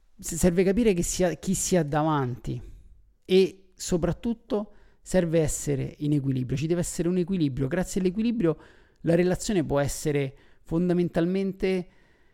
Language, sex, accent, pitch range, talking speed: Italian, male, native, 140-180 Hz, 125 wpm